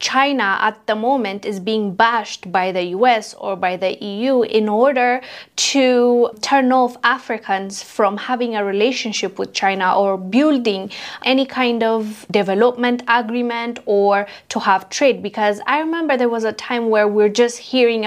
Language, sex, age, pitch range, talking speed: English, female, 20-39, 210-255 Hz, 160 wpm